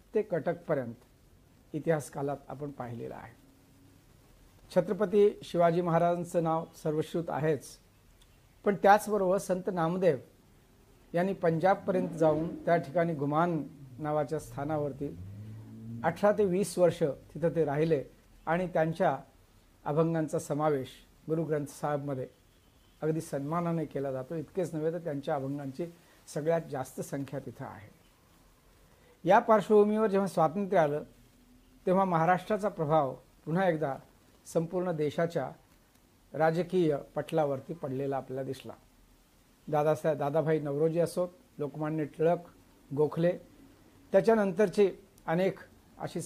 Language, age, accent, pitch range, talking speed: Marathi, 60-79, native, 140-175 Hz, 85 wpm